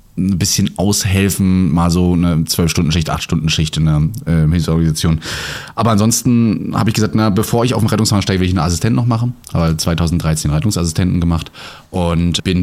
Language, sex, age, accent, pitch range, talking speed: German, male, 30-49, German, 90-115 Hz, 185 wpm